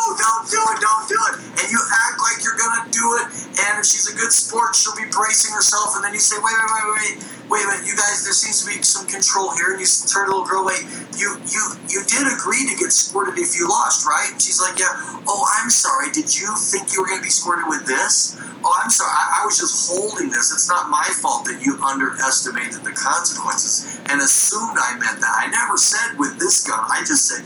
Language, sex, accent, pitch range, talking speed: English, male, American, 175-235 Hz, 250 wpm